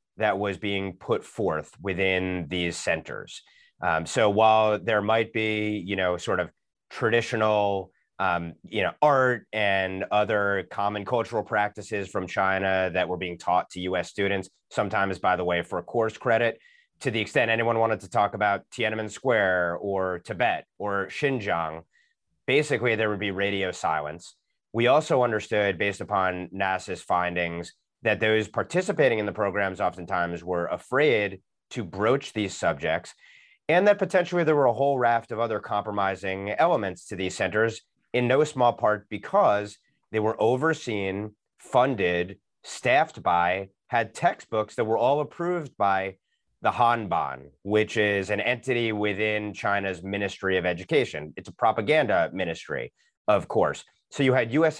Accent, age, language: American, 30-49, English